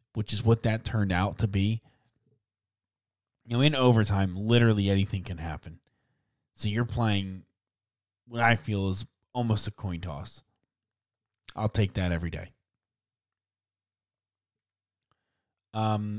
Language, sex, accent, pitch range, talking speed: English, male, American, 95-115 Hz, 120 wpm